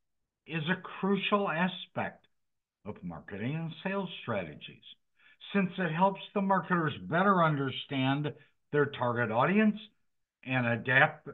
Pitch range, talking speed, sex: 120-180 Hz, 110 wpm, male